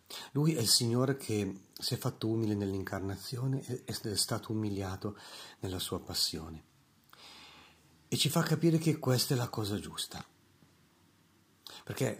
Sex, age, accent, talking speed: male, 50-69, native, 140 wpm